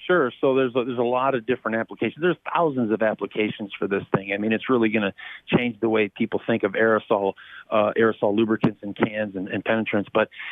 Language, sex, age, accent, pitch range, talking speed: English, male, 40-59, American, 115-135 Hz, 220 wpm